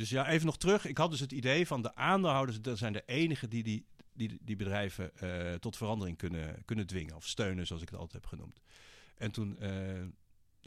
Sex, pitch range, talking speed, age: male, 105-140 Hz, 220 wpm, 50-69